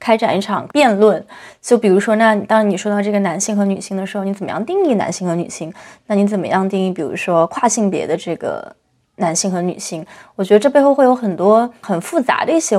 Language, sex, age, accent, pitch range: Chinese, female, 20-39, native, 200-260 Hz